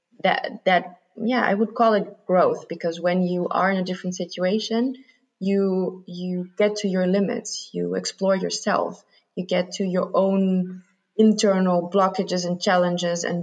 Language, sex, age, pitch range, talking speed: English, female, 20-39, 170-200 Hz, 155 wpm